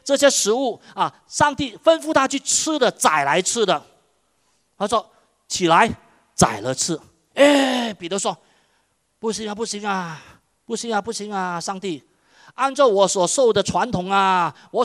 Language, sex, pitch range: Chinese, male, 165-265 Hz